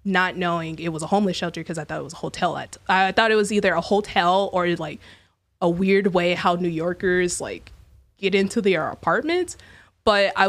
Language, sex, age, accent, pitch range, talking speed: English, female, 20-39, American, 160-195 Hz, 215 wpm